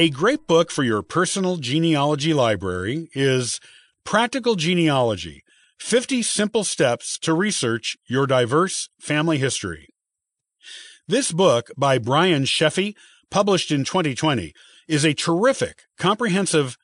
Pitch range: 130-185 Hz